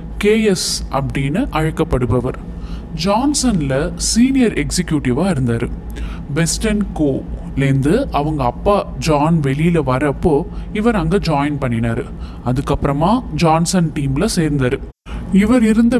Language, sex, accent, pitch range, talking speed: Tamil, male, native, 140-185 Hz, 90 wpm